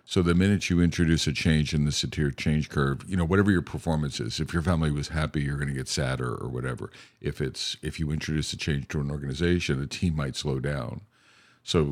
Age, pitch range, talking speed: 50-69, 75-85 Hz, 230 wpm